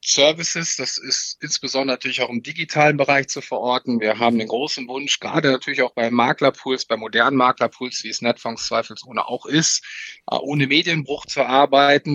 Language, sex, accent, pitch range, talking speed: German, male, German, 120-145 Hz, 170 wpm